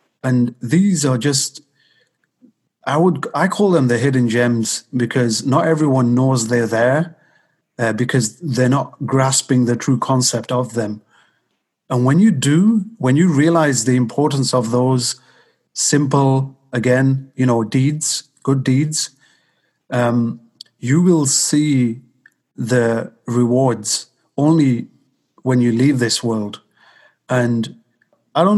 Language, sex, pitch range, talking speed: English, male, 120-145 Hz, 130 wpm